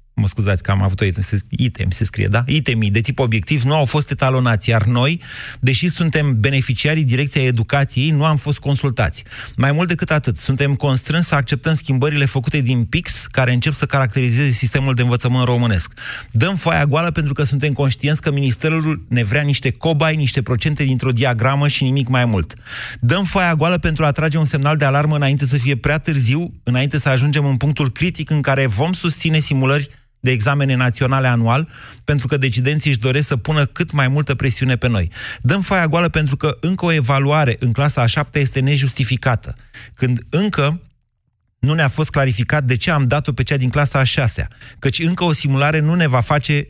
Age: 30-49